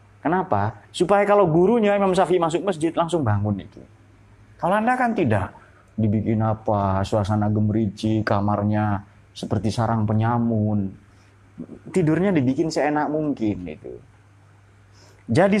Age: 30-49